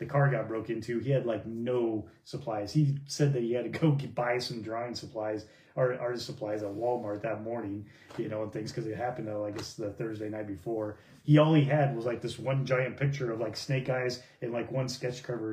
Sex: male